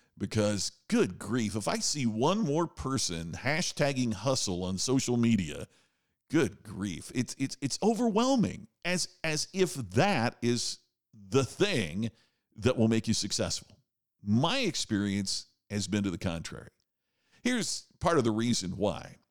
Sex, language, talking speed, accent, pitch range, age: male, English, 140 wpm, American, 100-160 Hz, 50-69